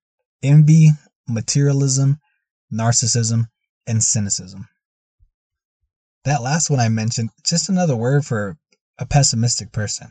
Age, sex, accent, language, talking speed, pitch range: 20-39, male, American, English, 100 wpm, 110-140 Hz